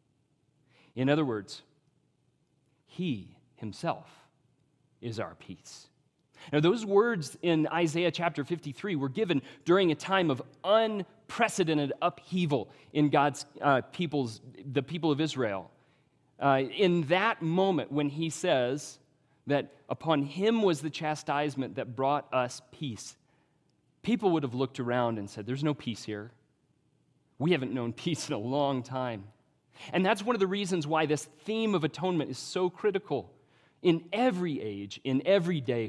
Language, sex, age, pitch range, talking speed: English, male, 30-49, 130-165 Hz, 145 wpm